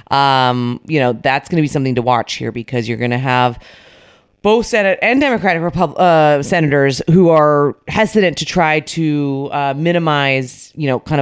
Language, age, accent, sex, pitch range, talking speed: English, 30-49, American, female, 135-175 Hz, 180 wpm